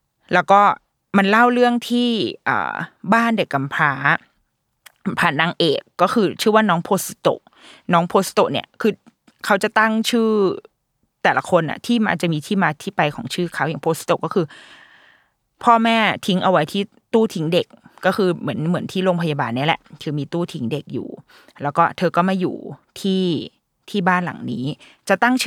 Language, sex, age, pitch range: Thai, female, 20-39, 160-210 Hz